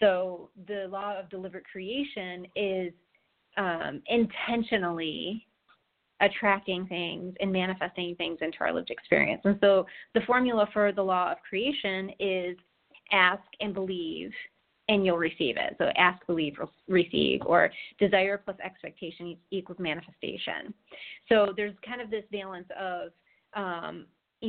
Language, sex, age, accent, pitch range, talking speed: English, female, 30-49, American, 185-215 Hz, 130 wpm